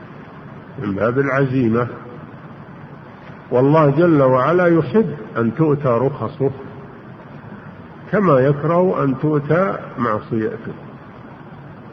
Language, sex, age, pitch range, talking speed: Arabic, male, 50-69, 120-145 Hz, 75 wpm